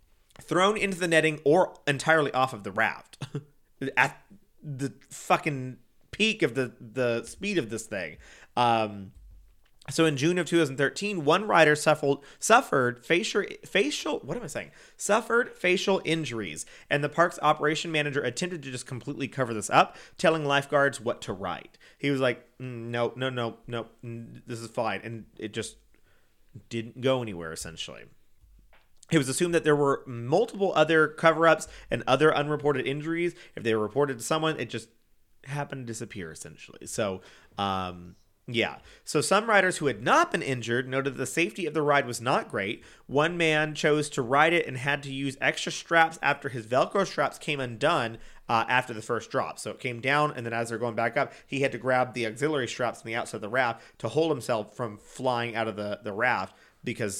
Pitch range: 115-155 Hz